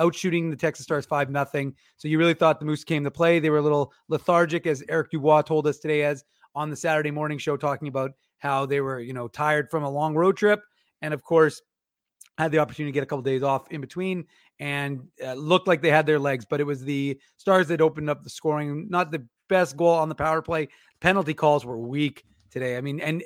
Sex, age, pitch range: male, 30-49, 145-175 Hz